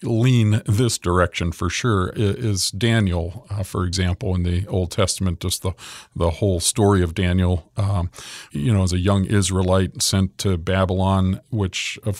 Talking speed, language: 160 wpm, English